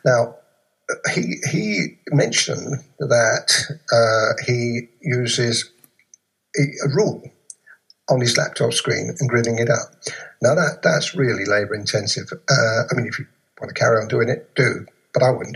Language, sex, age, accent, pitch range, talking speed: English, male, 50-69, British, 120-150 Hz, 145 wpm